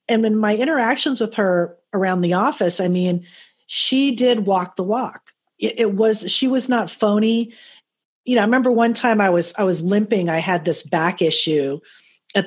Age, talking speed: 40-59, 190 wpm